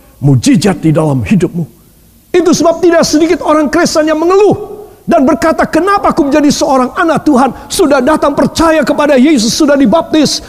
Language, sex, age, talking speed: Indonesian, male, 50-69, 155 wpm